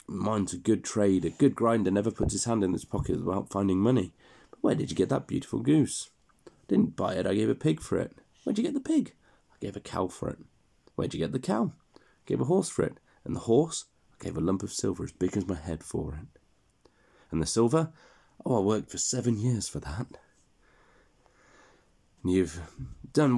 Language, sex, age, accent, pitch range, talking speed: English, male, 30-49, British, 95-130 Hz, 220 wpm